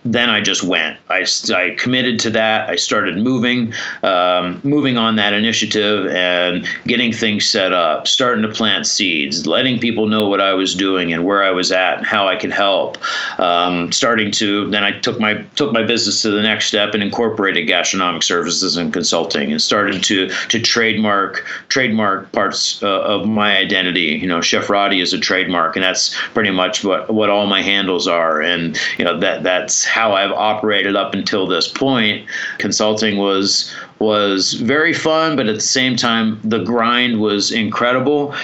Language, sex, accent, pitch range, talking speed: English, male, American, 100-115 Hz, 185 wpm